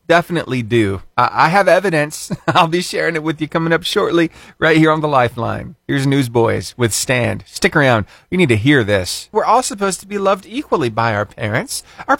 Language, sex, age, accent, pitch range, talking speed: English, male, 40-59, American, 115-170 Hz, 200 wpm